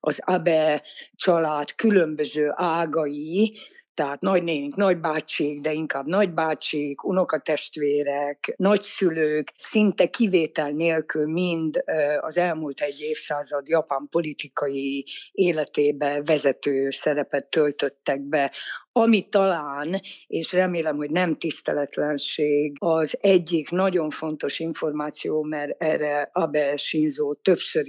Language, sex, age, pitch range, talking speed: Hungarian, female, 50-69, 150-180 Hz, 95 wpm